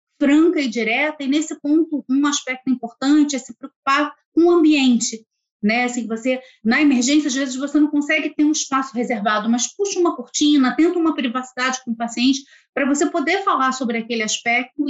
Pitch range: 235-310 Hz